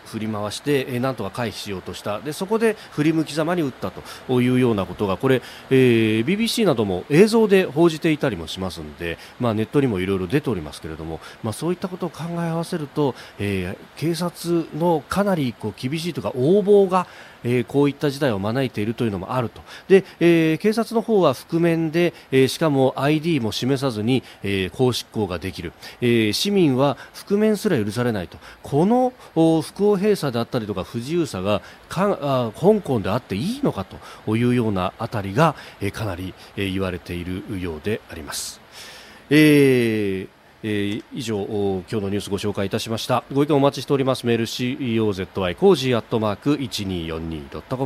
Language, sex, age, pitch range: Japanese, male, 40-59, 105-160 Hz